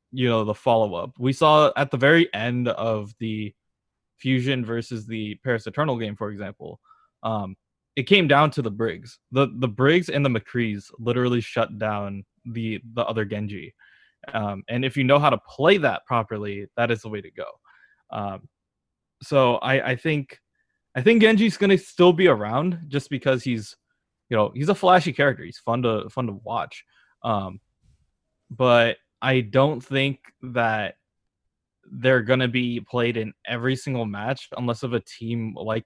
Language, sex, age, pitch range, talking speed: English, male, 20-39, 105-130 Hz, 170 wpm